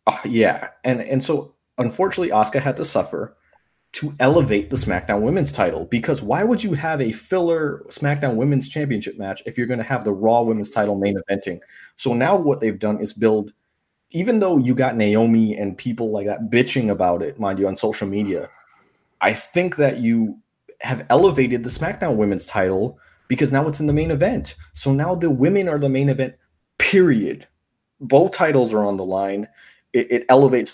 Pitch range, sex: 105-150 Hz, male